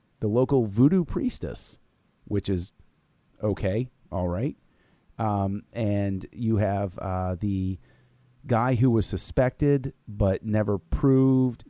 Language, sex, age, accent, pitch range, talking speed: English, male, 30-49, American, 95-120 Hz, 115 wpm